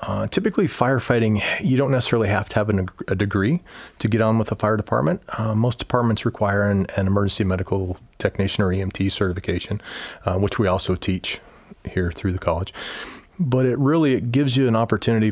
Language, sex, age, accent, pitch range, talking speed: English, male, 30-49, American, 95-110 Hz, 180 wpm